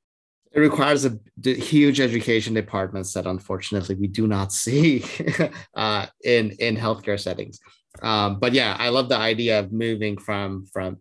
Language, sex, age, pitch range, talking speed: English, male, 30-49, 95-125 Hz, 155 wpm